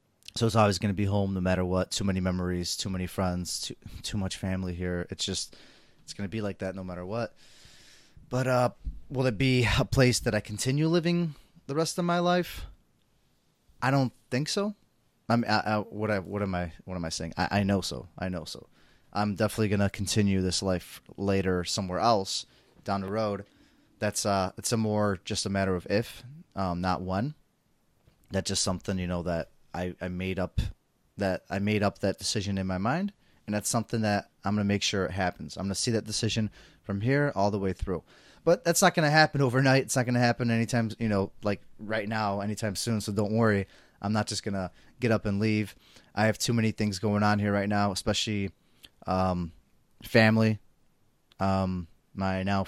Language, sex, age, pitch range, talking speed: English, male, 20-39, 95-115 Hz, 205 wpm